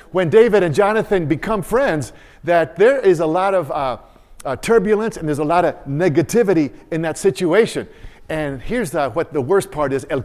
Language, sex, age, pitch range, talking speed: English, male, 50-69, 150-205 Hz, 185 wpm